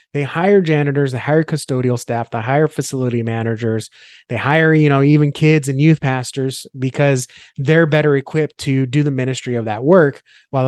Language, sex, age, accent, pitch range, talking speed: English, male, 30-49, American, 130-155 Hz, 180 wpm